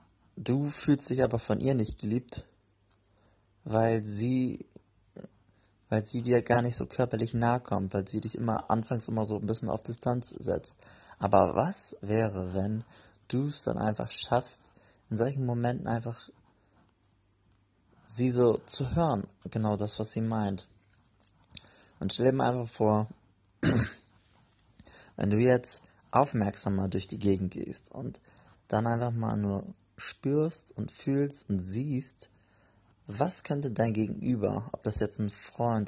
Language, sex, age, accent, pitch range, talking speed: German, male, 20-39, German, 100-120 Hz, 145 wpm